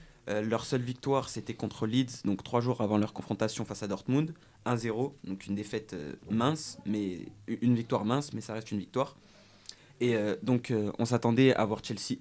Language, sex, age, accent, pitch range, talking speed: French, male, 20-39, French, 105-125 Hz, 195 wpm